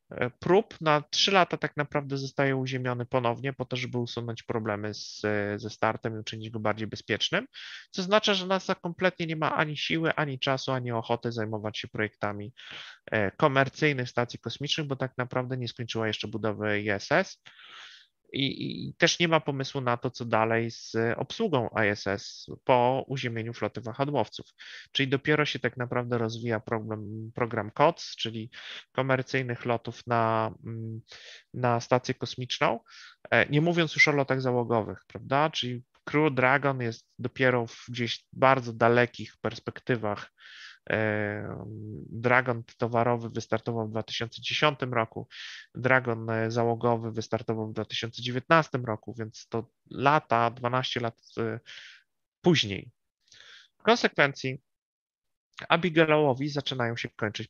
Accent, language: native, Polish